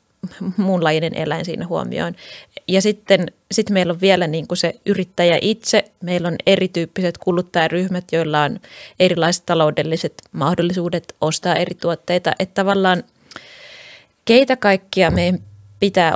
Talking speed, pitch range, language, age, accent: 120 wpm, 165-195 Hz, Finnish, 20-39, native